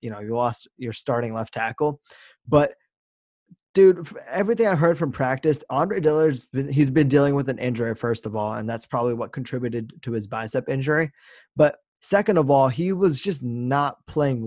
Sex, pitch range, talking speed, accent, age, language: male, 120-145 Hz, 185 wpm, American, 20-39, English